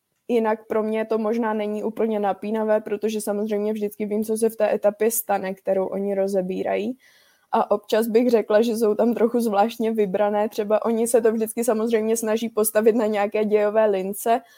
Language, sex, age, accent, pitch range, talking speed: Czech, female, 20-39, native, 200-220 Hz, 175 wpm